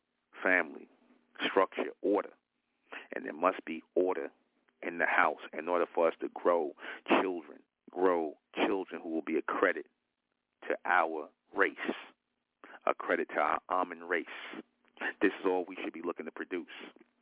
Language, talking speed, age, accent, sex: English, 150 wpm, 50-69, American, male